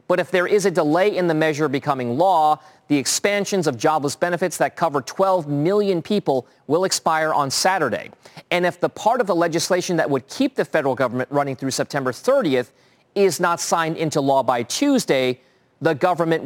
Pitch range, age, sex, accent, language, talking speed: 140-185 Hz, 40-59, male, American, English, 185 wpm